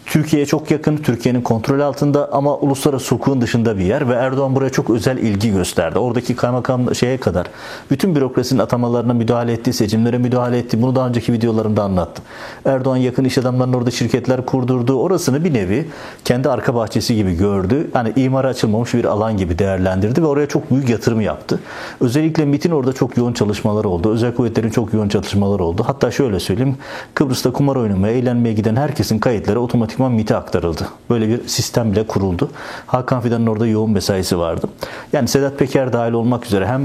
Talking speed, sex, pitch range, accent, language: 175 wpm, male, 105-130 Hz, native, Turkish